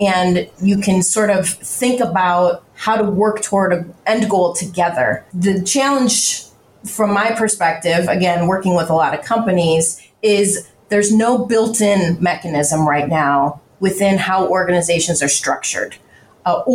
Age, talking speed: 30-49, 145 wpm